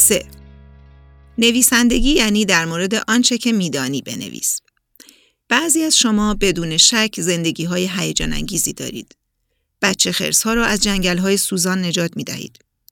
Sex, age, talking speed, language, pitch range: female, 40-59, 120 wpm, Persian, 160-210 Hz